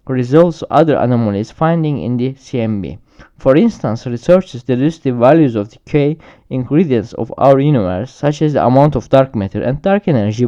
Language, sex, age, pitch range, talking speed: Turkish, male, 20-39, 120-150 Hz, 170 wpm